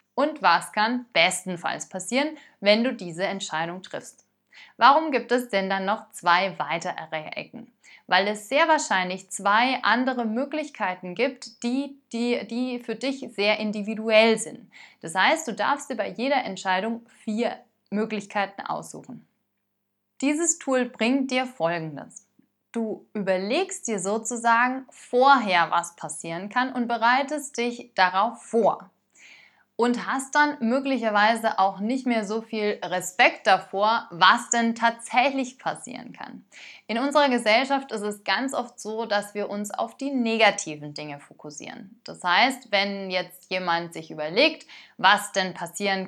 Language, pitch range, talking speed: German, 190-250 Hz, 135 wpm